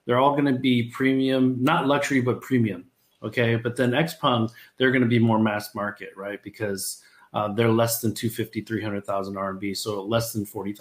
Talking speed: 185 wpm